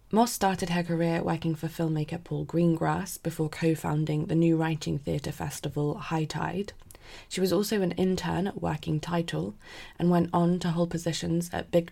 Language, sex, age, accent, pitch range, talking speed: English, female, 20-39, British, 150-175 Hz, 165 wpm